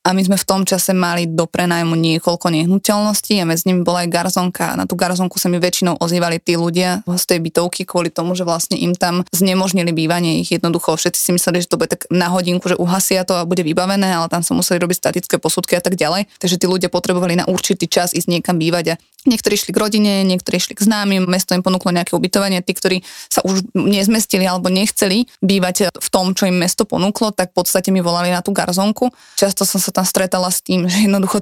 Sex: female